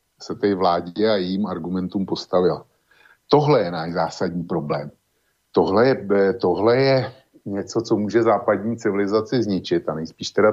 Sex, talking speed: male, 140 wpm